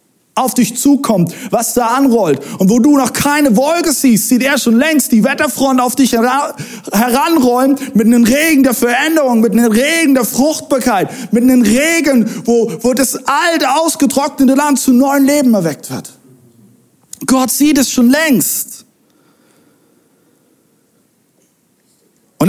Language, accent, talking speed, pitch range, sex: German, German, 140 wpm, 220-285 Hz, male